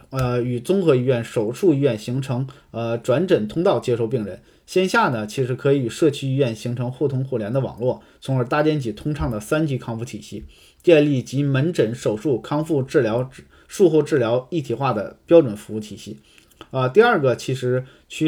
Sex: male